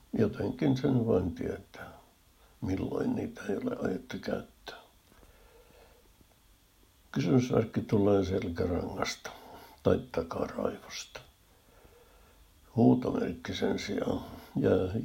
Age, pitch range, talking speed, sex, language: 60-79, 80-100 Hz, 75 wpm, male, Finnish